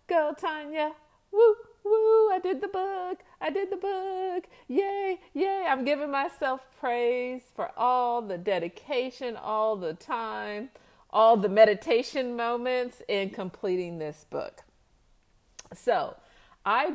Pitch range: 180-295 Hz